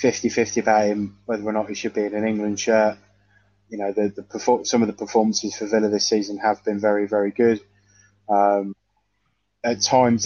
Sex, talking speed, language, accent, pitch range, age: male, 200 wpm, English, British, 100-115 Hz, 20-39